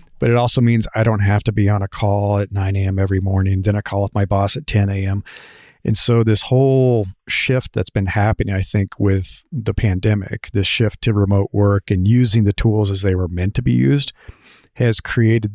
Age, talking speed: 40-59, 220 wpm